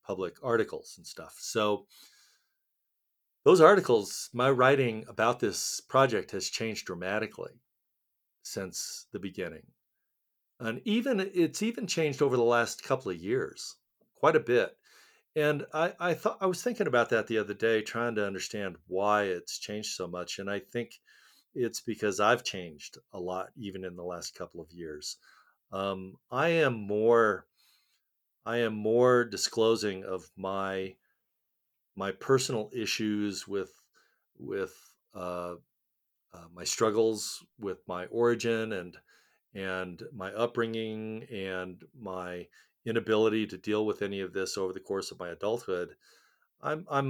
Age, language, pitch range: 50-69, English, 95-120 Hz